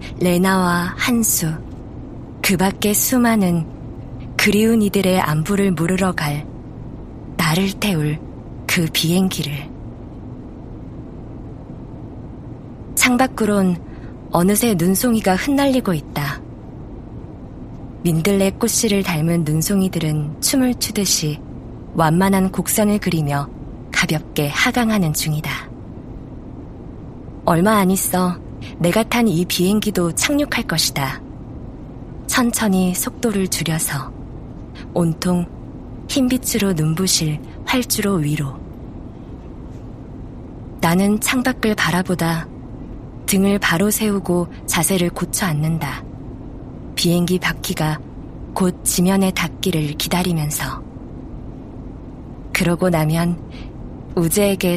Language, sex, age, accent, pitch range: Korean, female, 20-39, native, 145-195 Hz